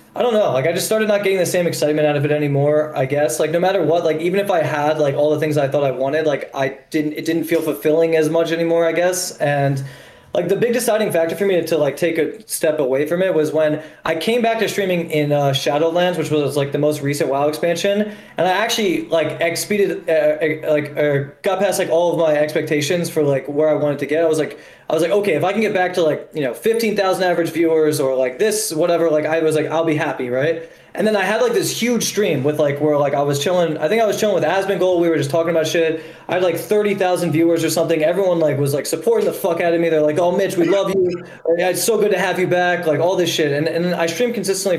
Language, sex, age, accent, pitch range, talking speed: English, male, 20-39, American, 150-185 Hz, 275 wpm